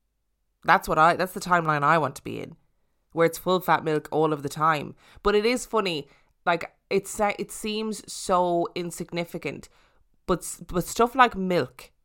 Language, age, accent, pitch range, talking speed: English, 20-39, Irish, 150-180 Hz, 175 wpm